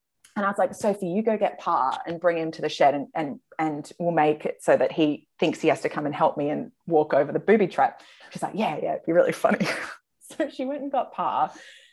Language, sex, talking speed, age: English, female, 260 wpm, 20-39